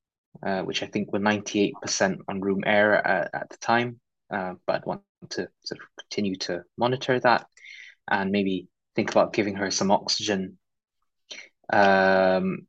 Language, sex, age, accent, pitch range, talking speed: English, male, 20-39, British, 95-110 Hz, 160 wpm